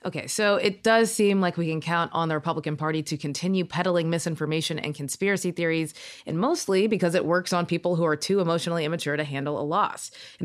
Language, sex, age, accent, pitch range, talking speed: English, female, 20-39, American, 155-195 Hz, 215 wpm